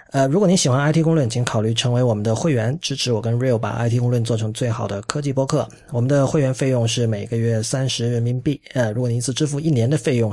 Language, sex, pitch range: Chinese, male, 115-145 Hz